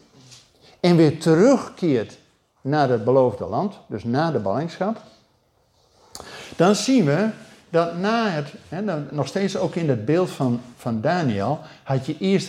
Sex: male